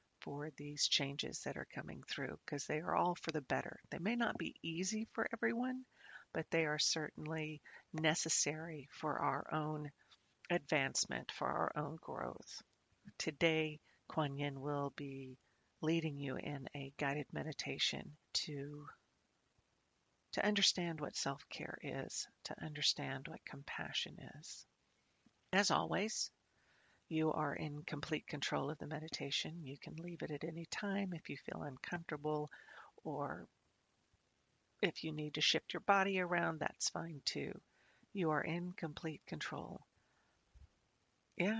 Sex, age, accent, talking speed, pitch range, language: female, 50-69, American, 135 wpm, 150-180 Hz, English